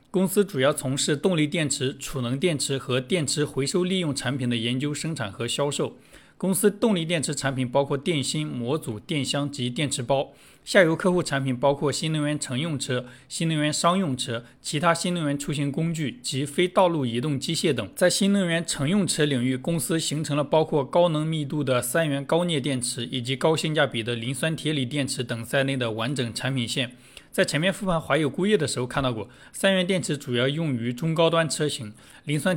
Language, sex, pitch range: Chinese, male, 130-165 Hz